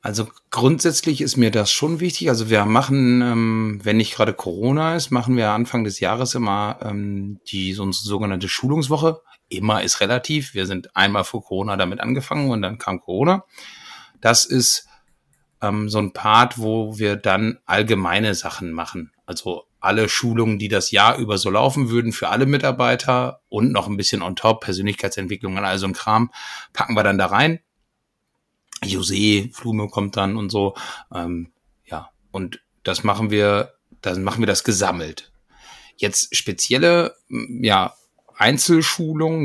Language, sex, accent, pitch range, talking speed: German, male, German, 100-125 Hz, 150 wpm